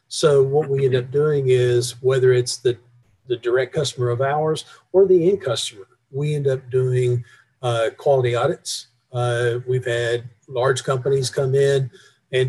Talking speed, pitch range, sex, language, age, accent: 165 wpm, 120-135 Hz, male, English, 50-69, American